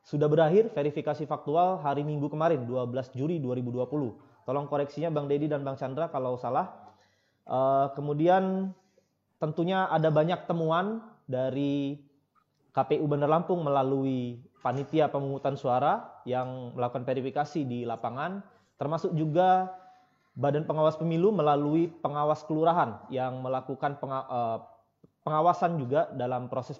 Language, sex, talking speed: Indonesian, male, 115 wpm